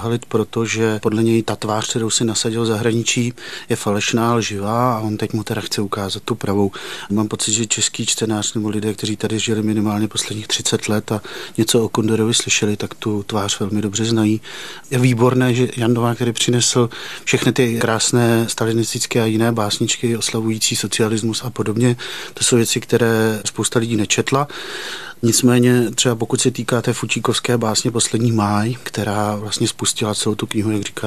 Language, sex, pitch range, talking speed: Czech, male, 105-120 Hz, 175 wpm